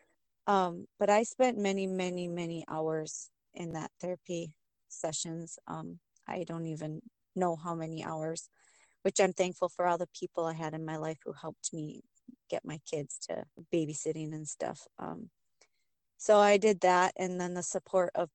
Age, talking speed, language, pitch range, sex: 30-49, 170 wpm, English, 165-190 Hz, female